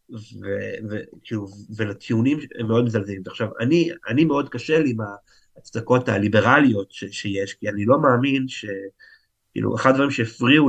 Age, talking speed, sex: 50-69, 125 wpm, male